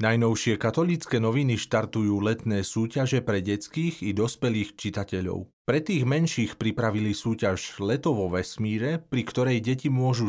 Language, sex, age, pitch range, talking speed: Slovak, male, 40-59, 105-135 Hz, 130 wpm